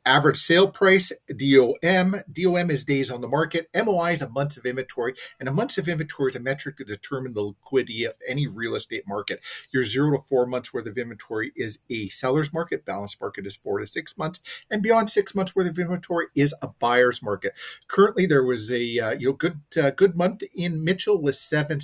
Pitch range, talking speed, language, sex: 120-160 Hz, 215 wpm, English, male